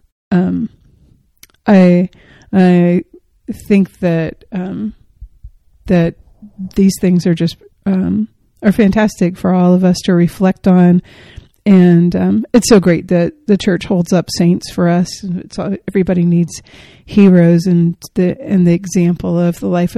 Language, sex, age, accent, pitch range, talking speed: English, female, 40-59, American, 175-195 Hz, 140 wpm